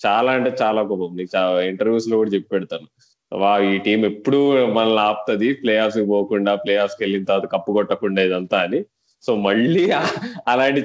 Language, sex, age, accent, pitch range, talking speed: Telugu, male, 20-39, native, 100-115 Hz, 165 wpm